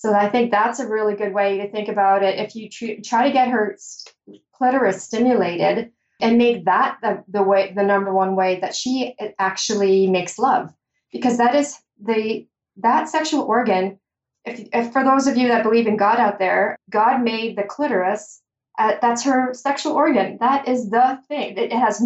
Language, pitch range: English, 200-240 Hz